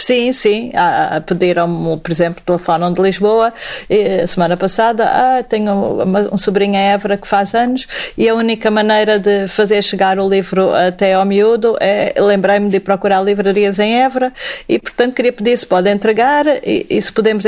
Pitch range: 180-225 Hz